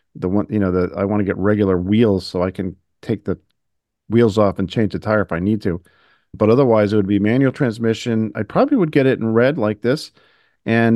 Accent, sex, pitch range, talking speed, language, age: American, male, 105-135 Hz, 235 wpm, English, 40-59